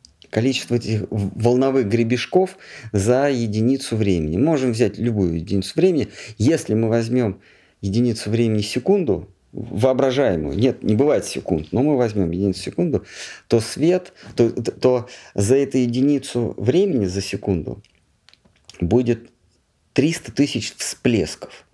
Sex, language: male, Russian